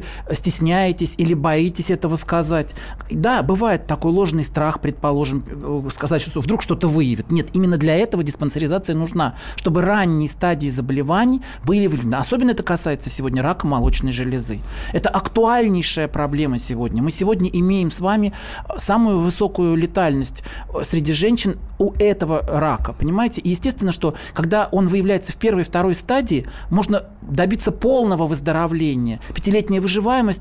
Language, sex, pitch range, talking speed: Russian, male, 150-195 Hz, 135 wpm